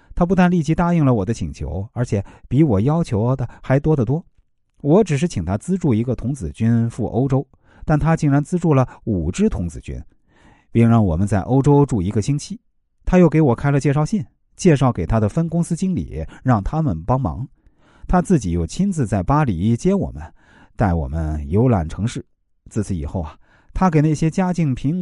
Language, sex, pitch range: Chinese, male, 95-150 Hz